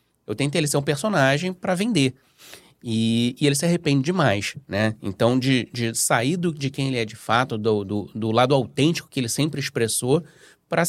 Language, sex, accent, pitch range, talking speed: Portuguese, male, Brazilian, 115-170 Hz, 200 wpm